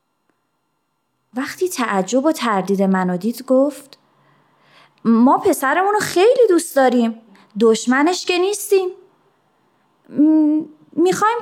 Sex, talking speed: female, 80 wpm